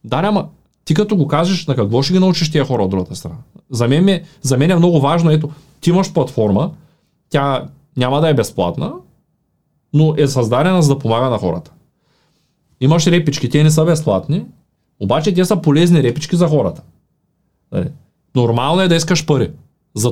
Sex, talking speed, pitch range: male, 180 wpm, 125-170 Hz